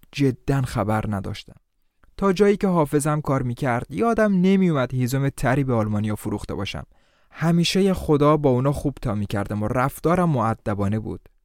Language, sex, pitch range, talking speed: Persian, male, 110-150 Hz, 145 wpm